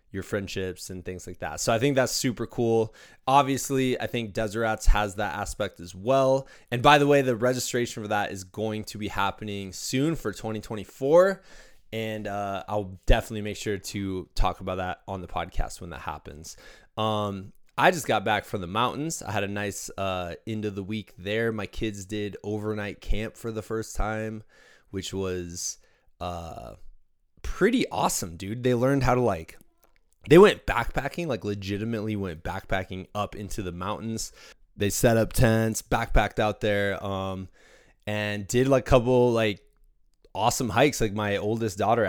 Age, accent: 20-39, American